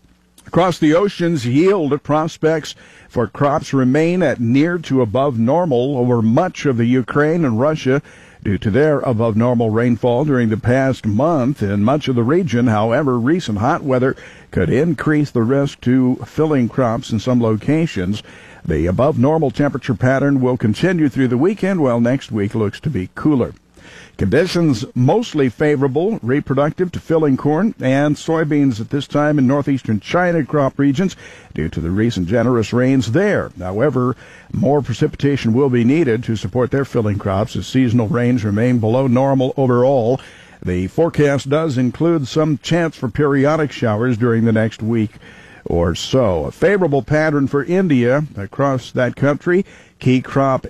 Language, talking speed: English, 155 wpm